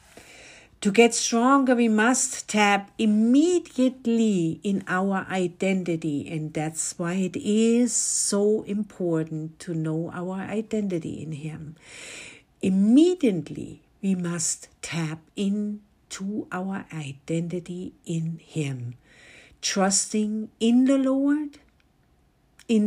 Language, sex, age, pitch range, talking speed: English, female, 60-79, 155-215 Hz, 95 wpm